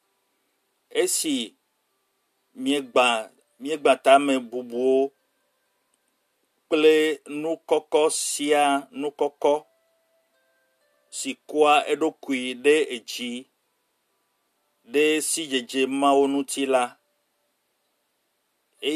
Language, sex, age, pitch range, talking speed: French, male, 50-69, 130-170 Hz, 80 wpm